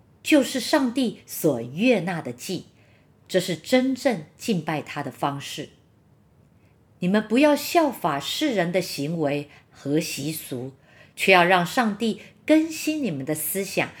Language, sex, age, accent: Chinese, female, 50-69, American